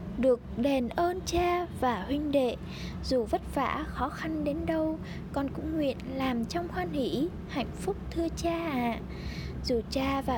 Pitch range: 230-300 Hz